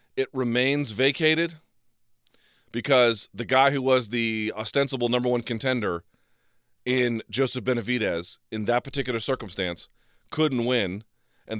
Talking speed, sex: 120 wpm, male